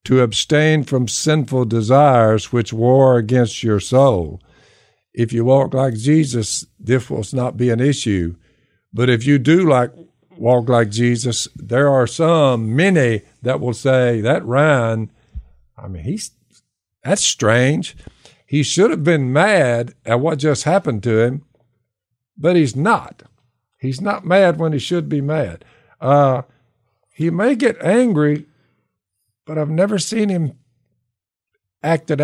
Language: English